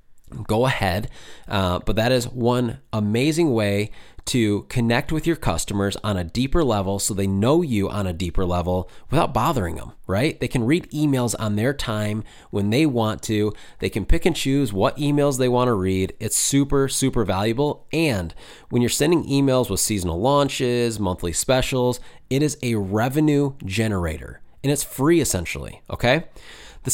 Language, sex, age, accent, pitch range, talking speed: English, male, 20-39, American, 95-130 Hz, 170 wpm